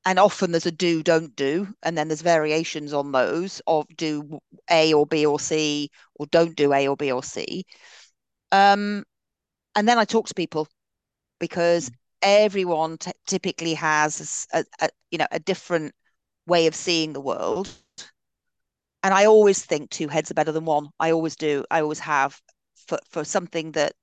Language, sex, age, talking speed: English, female, 40-59, 175 wpm